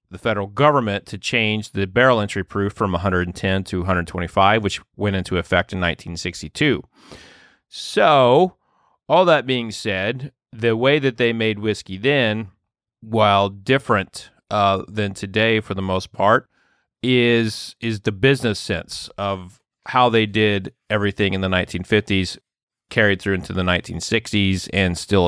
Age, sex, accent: 30-49, male, American